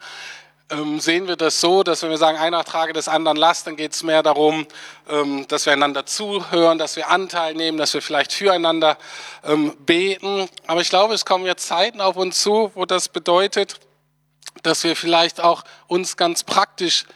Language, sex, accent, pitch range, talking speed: German, male, German, 155-195 Hz, 180 wpm